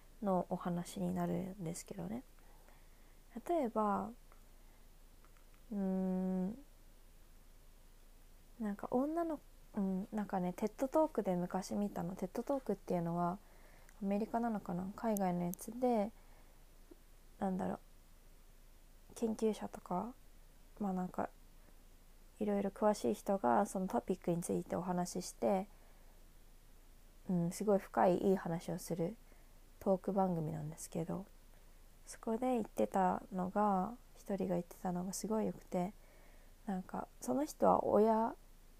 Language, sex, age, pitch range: Japanese, female, 20-39, 180-225 Hz